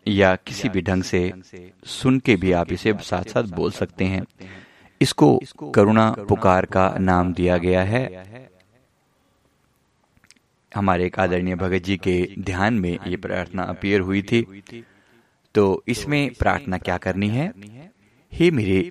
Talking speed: 135 wpm